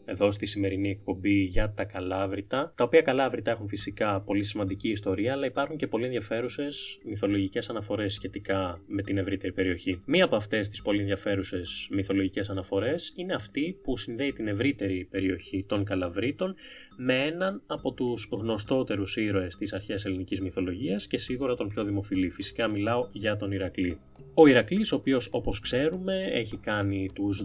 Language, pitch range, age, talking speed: Greek, 100-125 Hz, 20-39, 160 wpm